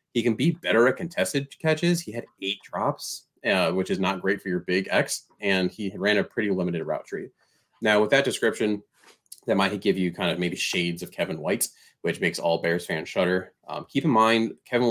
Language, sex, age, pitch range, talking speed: English, male, 30-49, 80-100 Hz, 215 wpm